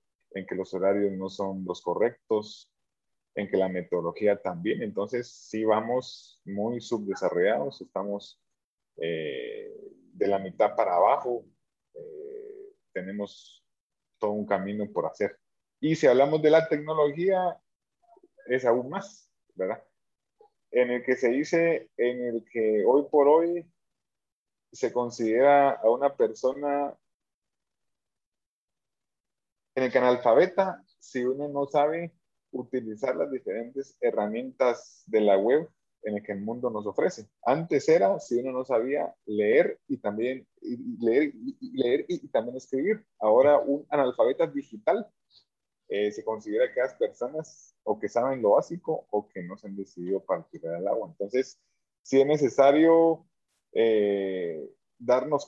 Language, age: Spanish, 30-49